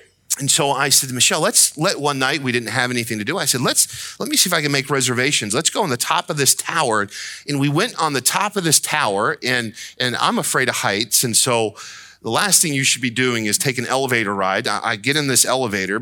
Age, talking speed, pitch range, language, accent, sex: 40-59, 260 wpm, 120-170 Hz, English, American, male